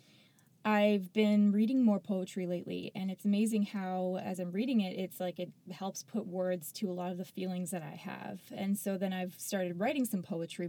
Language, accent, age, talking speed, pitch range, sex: English, American, 20-39, 210 wpm, 175-205 Hz, female